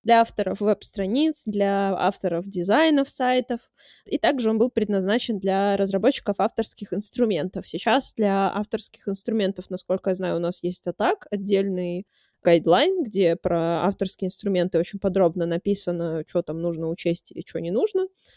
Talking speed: 145 wpm